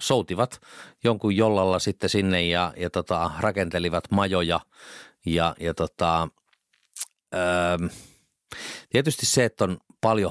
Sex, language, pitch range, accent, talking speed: male, Finnish, 85-110 Hz, native, 110 wpm